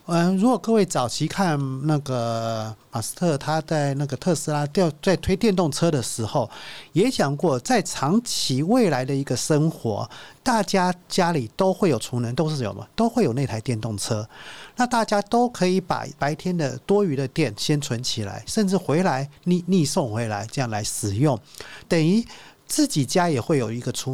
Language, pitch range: Chinese, 125-185 Hz